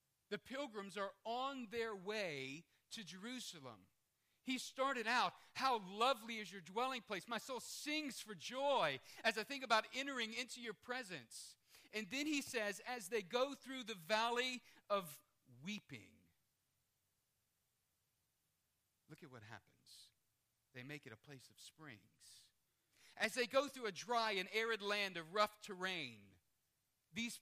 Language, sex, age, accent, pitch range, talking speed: English, male, 40-59, American, 160-240 Hz, 145 wpm